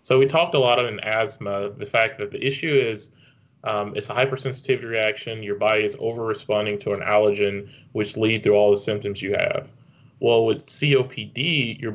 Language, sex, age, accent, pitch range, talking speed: English, male, 20-39, American, 105-135 Hz, 190 wpm